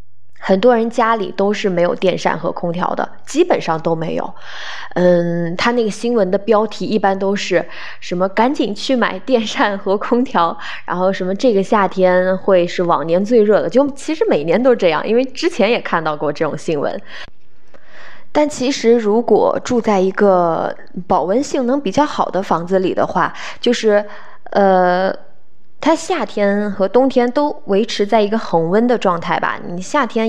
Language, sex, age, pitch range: Chinese, female, 20-39, 180-240 Hz